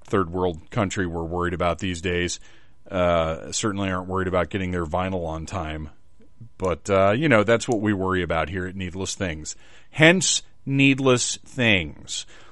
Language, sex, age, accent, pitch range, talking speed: English, male, 30-49, American, 95-120 Hz, 165 wpm